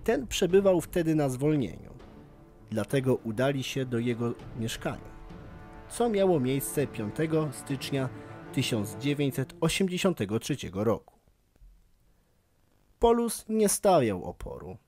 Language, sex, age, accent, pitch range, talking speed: Polish, male, 40-59, native, 115-155 Hz, 90 wpm